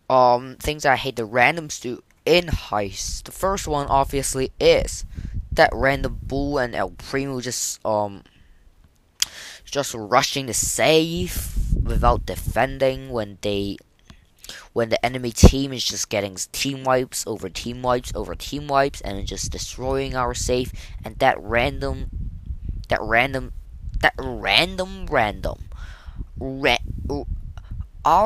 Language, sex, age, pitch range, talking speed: English, female, 10-29, 90-130 Hz, 120 wpm